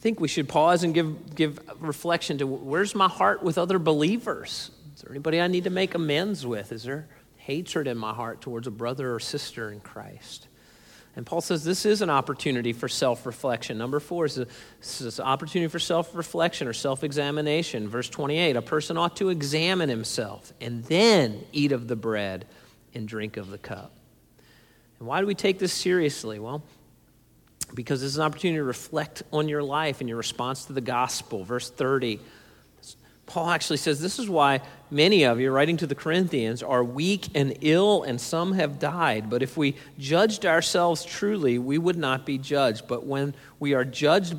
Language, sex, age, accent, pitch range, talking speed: English, male, 40-59, American, 125-170 Hz, 190 wpm